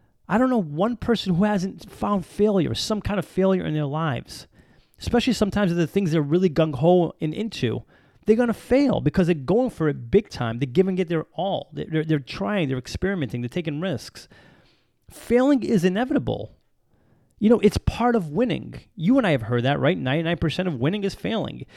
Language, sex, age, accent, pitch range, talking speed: English, male, 30-49, American, 160-220 Hz, 195 wpm